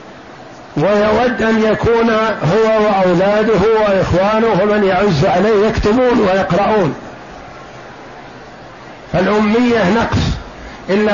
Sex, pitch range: male, 185-215 Hz